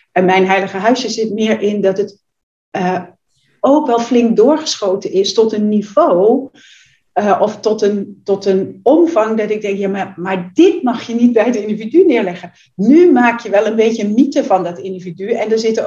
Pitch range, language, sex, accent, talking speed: 195-245 Hz, Dutch, female, Dutch, 200 wpm